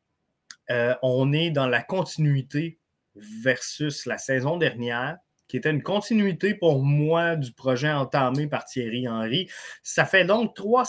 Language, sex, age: French, male, 30-49